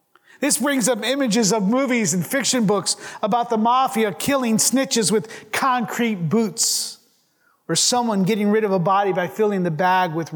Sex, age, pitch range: male, 30-49, 170-235 Hz